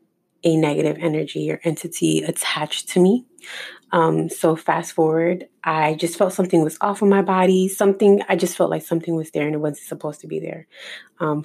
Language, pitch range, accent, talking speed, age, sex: English, 150-180 Hz, American, 195 wpm, 20-39, female